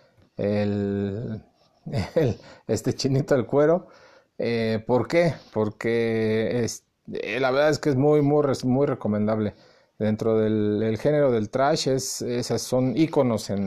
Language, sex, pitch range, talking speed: Spanish, male, 110-145 Hz, 135 wpm